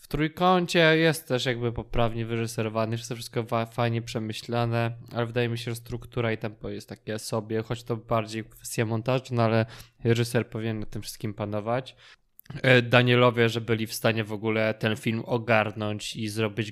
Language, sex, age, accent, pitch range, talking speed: Polish, male, 20-39, native, 110-125 Hz, 175 wpm